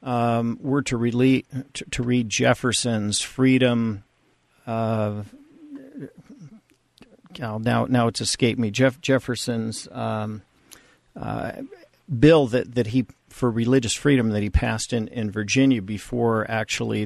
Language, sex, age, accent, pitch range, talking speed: English, male, 50-69, American, 115-135 Hz, 130 wpm